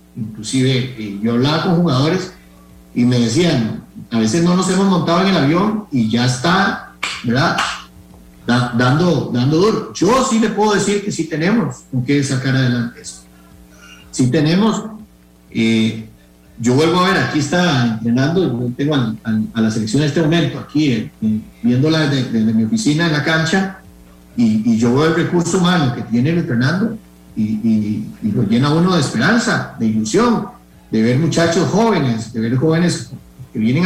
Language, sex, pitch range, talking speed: Spanish, male, 115-170 Hz, 175 wpm